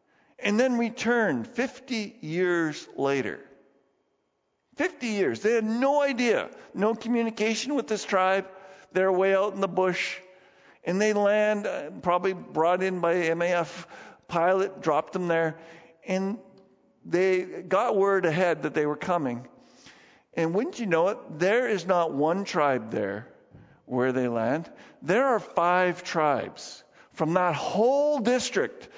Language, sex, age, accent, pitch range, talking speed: English, male, 50-69, American, 175-235 Hz, 135 wpm